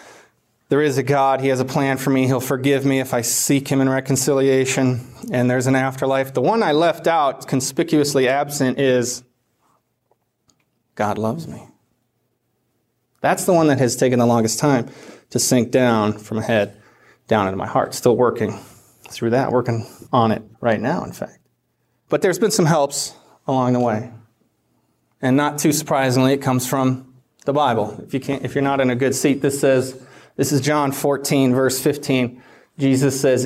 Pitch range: 120-145 Hz